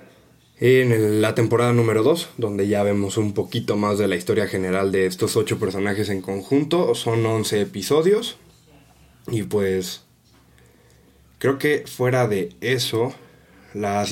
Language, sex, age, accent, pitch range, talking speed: Spanish, male, 20-39, Mexican, 100-120 Hz, 135 wpm